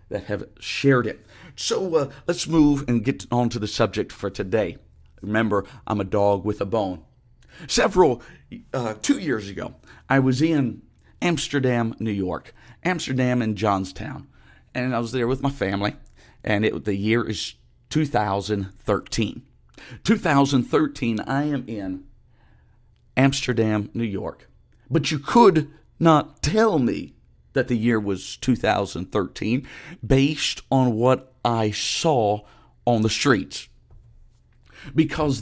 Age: 50-69